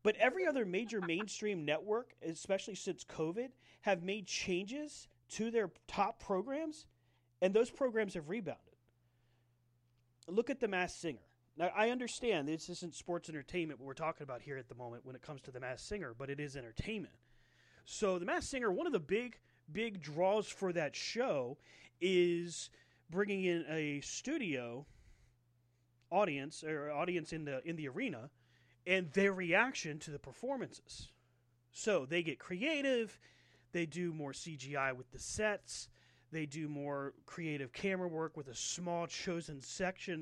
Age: 30-49